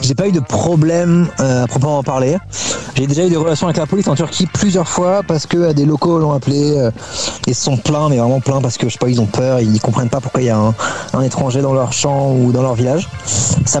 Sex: male